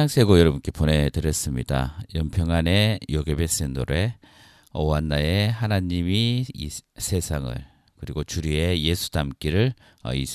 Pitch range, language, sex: 75-100 Hz, Korean, male